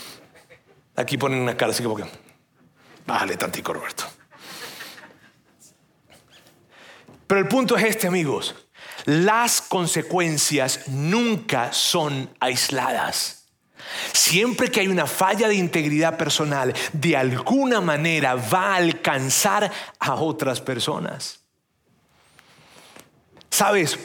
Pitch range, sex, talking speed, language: 145-215 Hz, male, 95 wpm, Spanish